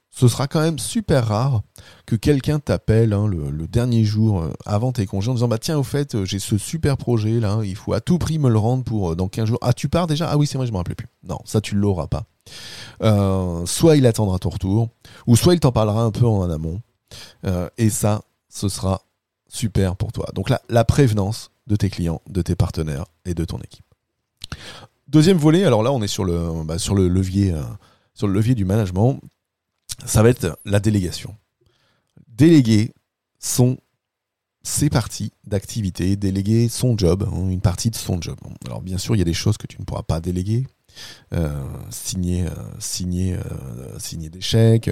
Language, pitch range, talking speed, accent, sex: French, 95-120 Hz, 205 wpm, French, male